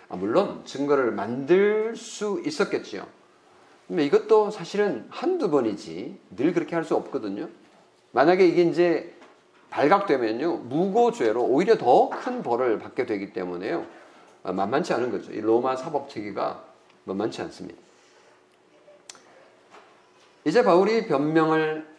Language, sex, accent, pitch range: Korean, male, native, 140-225 Hz